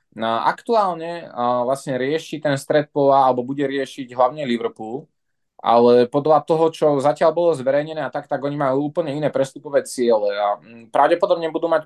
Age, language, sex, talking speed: 20-39, Slovak, male, 160 wpm